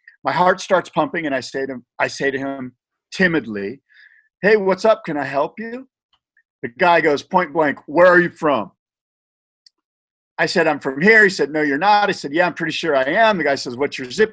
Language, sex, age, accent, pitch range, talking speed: English, male, 50-69, American, 135-180 Hz, 215 wpm